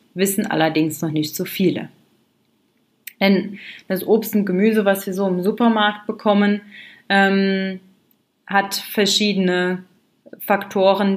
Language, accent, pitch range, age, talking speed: German, German, 170-210 Hz, 30-49, 115 wpm